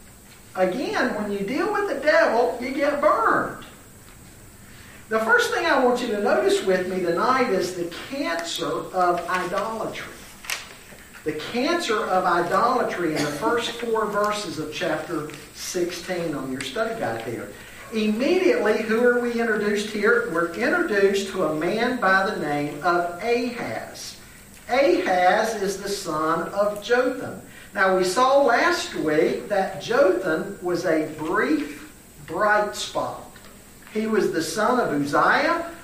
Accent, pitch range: American, 175-245 Hz